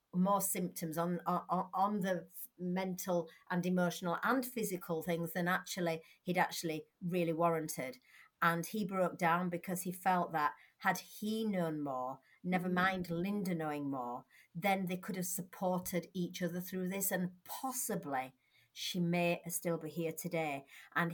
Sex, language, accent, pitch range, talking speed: female, English, British, 170-195 Hz, 150 wpm